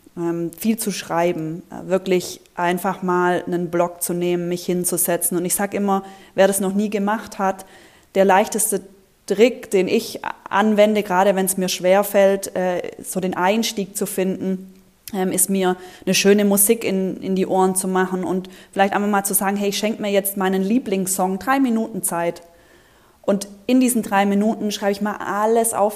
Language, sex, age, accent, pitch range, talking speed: German, female, 20-39, German, 190-230 Hz, 175 wpm